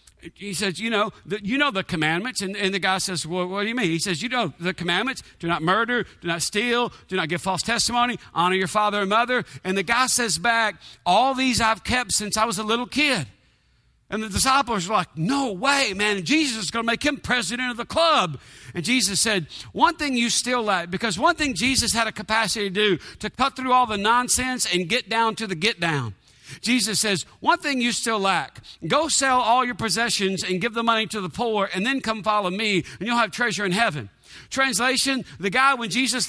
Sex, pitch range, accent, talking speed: male, 185-245 Hz, American, 230 wpm